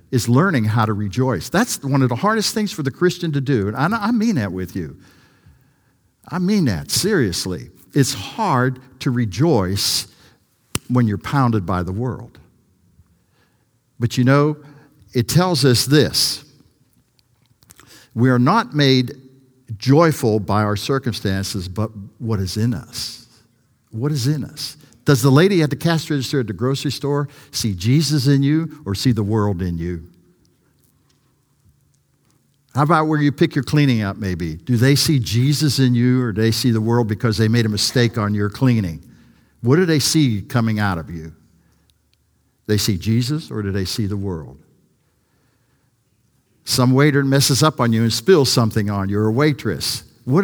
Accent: American